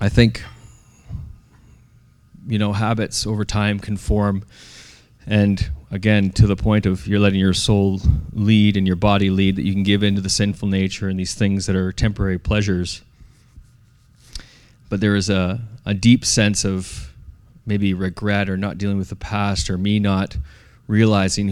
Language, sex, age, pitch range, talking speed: English, male, 20-39, 100-115 Hz, 165 wpm